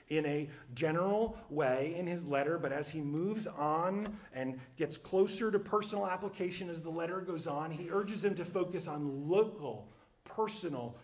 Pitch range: 135-200 Hz